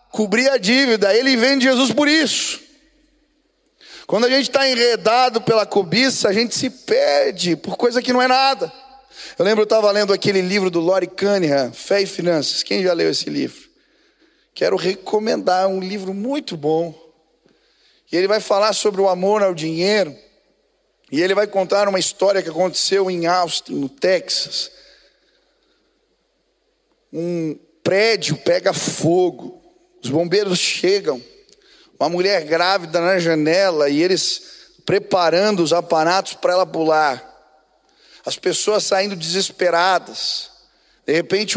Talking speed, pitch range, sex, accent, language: 140 wpm, 180-255 Hz, male, Brazilian, Portuguese